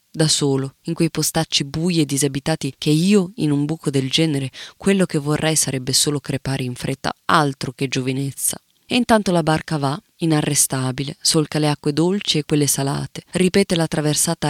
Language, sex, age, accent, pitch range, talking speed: Italian, female, 20-39, native, 135-170 Hz, 175 wpm